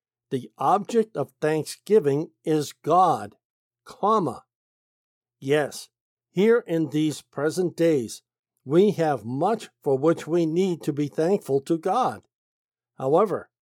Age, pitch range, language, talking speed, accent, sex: 60-79, 140-190 Hz, English, 115 wpm, American, male